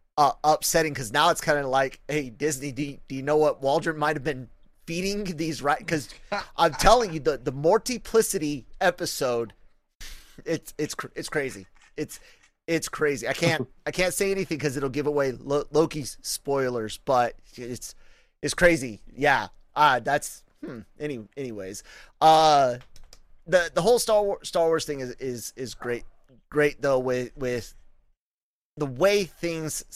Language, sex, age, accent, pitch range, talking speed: English, male, 30-49, American, 130-165 Hz, 155 wpm